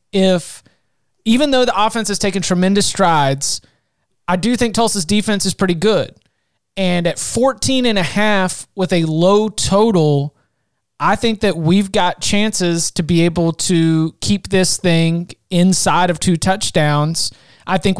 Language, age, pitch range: English, 30-49, 160-195 Hz